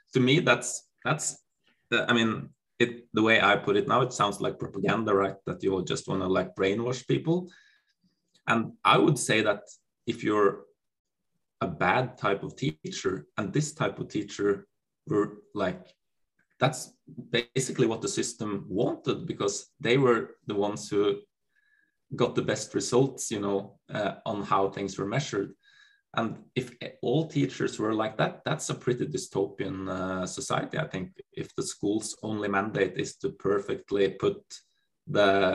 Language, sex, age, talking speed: English, male, 20-39, 160 wpm